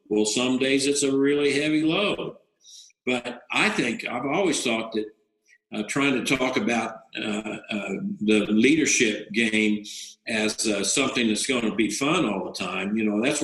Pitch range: 130-175 Hz